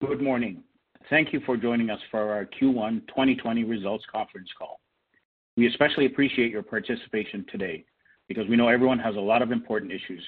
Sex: male